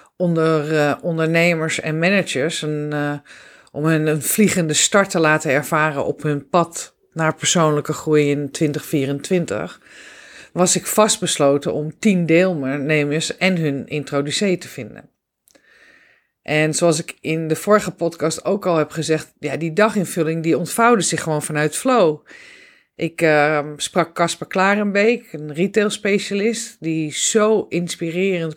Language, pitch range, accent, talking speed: Dutch, 155-180 Hz, Dutch, 135 wpm